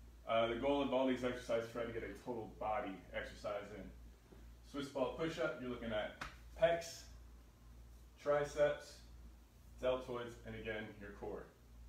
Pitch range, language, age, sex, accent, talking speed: 80-130 Hz, English, 20-39, male, American, 145 wpm